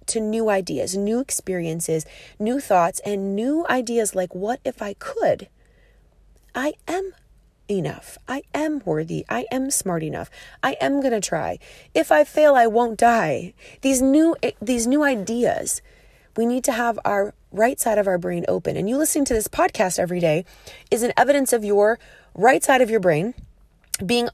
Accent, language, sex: American, English, female